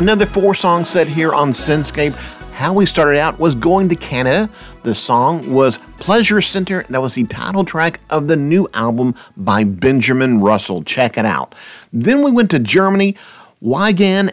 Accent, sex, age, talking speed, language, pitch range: American, male, 50-69, 170 wpm, English, 115-170 Hz